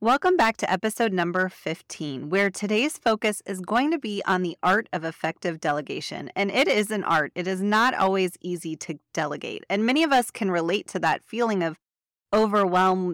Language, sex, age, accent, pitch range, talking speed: English, female, 30-49, American, 175-215 Hz, 190 wpm